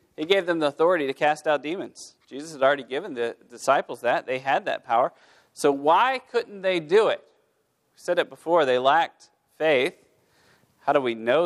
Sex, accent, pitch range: male, American, 135-195 Hz